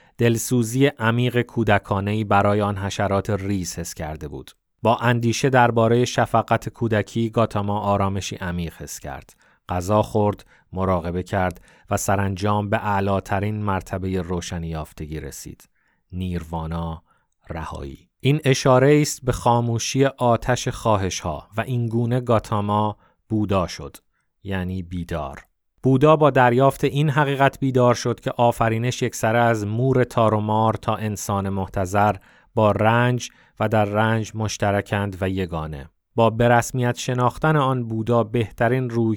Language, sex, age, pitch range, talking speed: Persian, male, 30-49, 95-120 Hz, 125 wpm